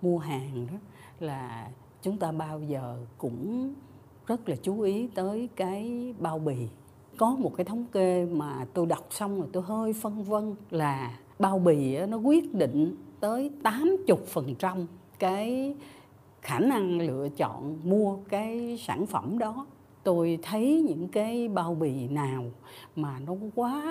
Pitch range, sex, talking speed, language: 155-225 Hz, female, 150 wpm, Vietnamese